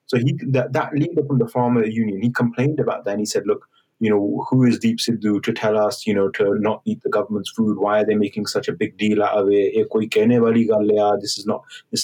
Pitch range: 110-140 Hz